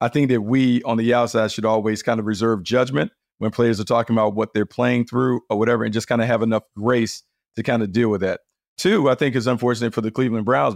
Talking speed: 255 wpm